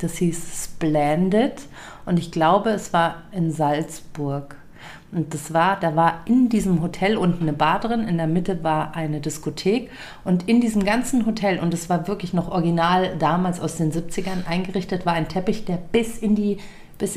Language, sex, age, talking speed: German, female, 40-59, 180 wpm